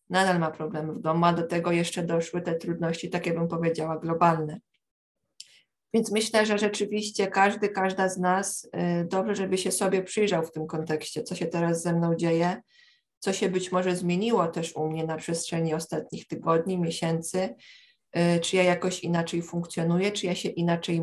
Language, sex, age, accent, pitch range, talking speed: Polish, female, 20-39, native, 170-190 Hz, 180 wpm